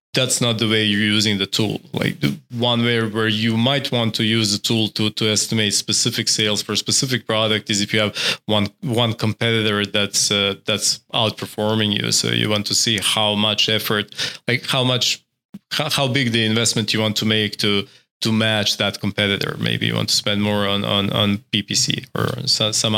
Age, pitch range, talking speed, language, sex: 20-39, 105-115 Hz, 205 wpm, English, male